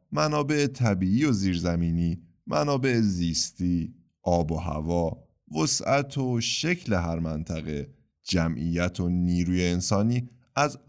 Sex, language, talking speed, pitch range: male, Persian, 105 wpm, 80-120 Hz